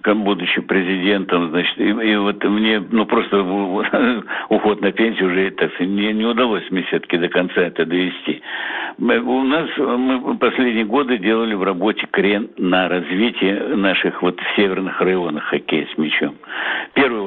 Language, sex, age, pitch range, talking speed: Russian, male, 60-79, 90-115 Hz, 140 wpm